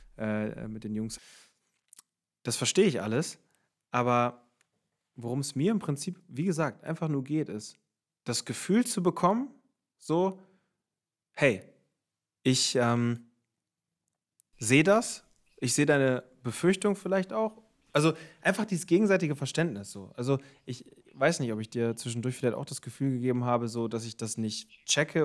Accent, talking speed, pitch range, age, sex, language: German, 145 wpm, 110-145 Hz, 30-49, male, German